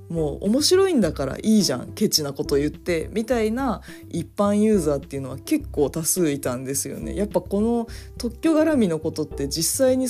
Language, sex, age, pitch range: Japanese, female, 20-39, 140-225 Hz